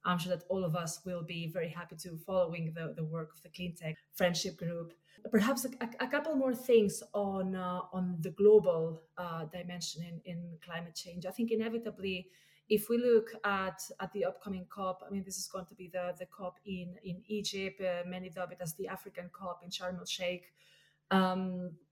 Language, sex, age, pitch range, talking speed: English, female, 20-39, 170-190 Hz, 205 wpm